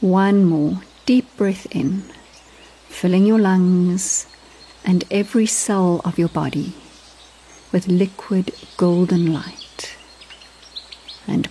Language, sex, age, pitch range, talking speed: English, female, 50-69, 175-205 Hz, 100 wpm